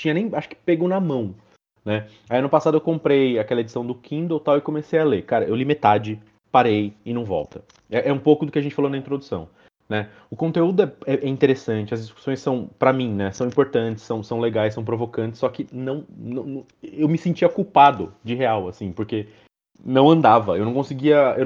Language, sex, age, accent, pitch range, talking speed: Portuguese, male, 30-49, Brazilian, 110-145 Hz, 220 wpm